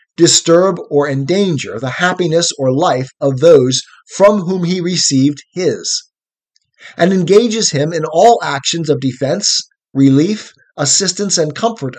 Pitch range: 145-180 Hz